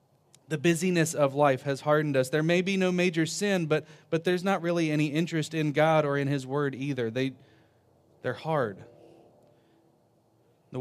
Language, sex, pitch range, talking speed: English, male, 135-160 Hz, 170 wpm